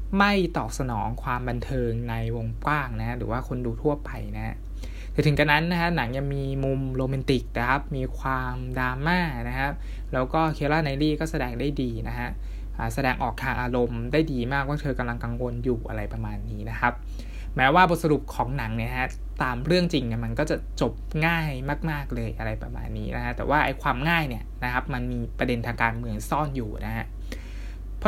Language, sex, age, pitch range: Thai, male, 20-39, 115-145 Hz